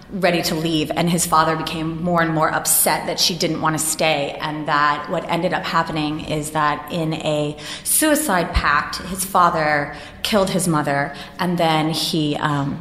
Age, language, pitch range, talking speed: 20-39, English, 155-195 Hz, 180 wpm